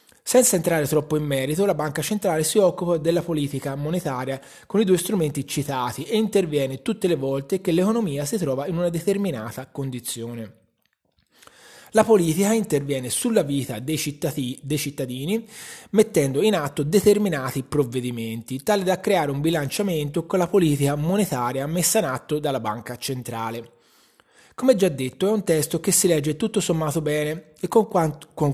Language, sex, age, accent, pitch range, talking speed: Italian, male, 20-39, native, 130-185 Hz, 155 wpm